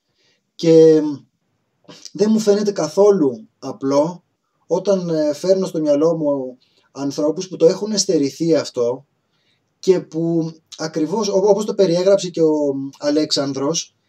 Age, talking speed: 20-39, 110 wpm